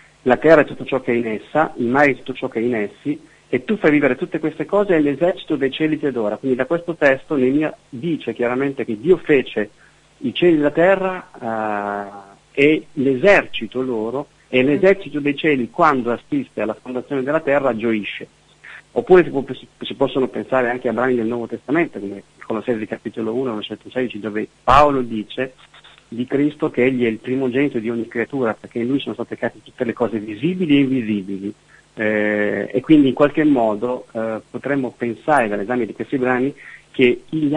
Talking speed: 195 wpm